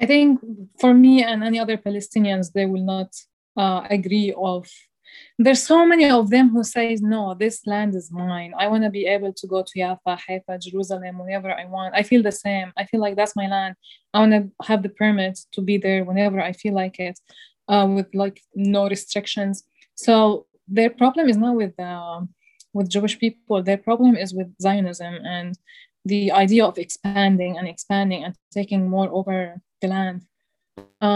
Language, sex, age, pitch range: English, female, 20-39, 195-230 Hz